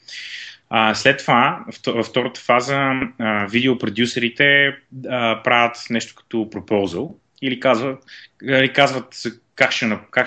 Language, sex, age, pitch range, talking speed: Bulgarian, male, 20-39, 110-145 Hz, 80 wpm